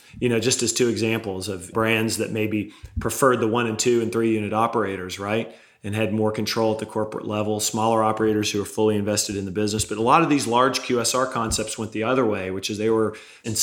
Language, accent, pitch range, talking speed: English, American, 105-120 Hz, 240 wpm